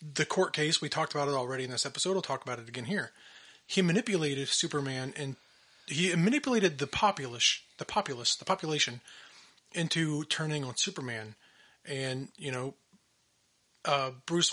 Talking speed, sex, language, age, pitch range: 155 wpm, male, English, 30-49, 135-185 Hz